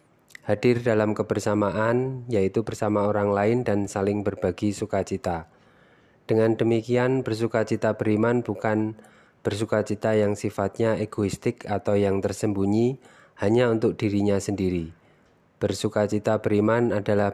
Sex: male